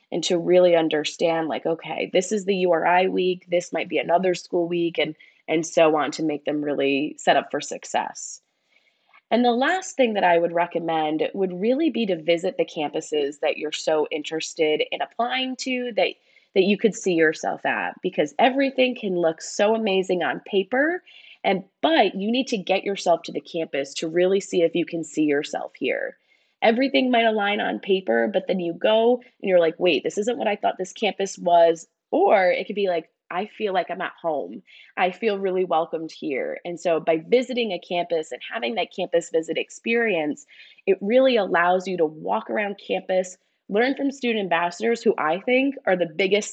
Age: 20-39